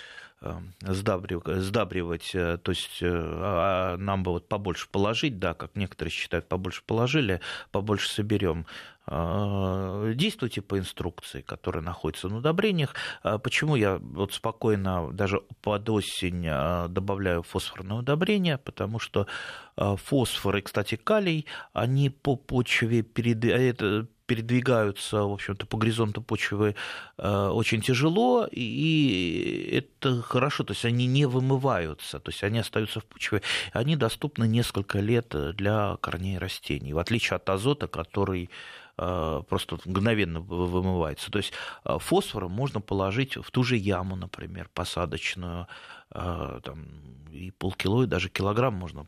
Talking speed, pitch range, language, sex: 125 wpm, 90-120 Hz, Russian, male